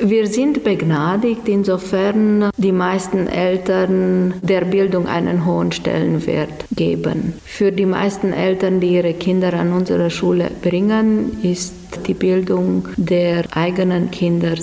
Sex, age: female, 50-69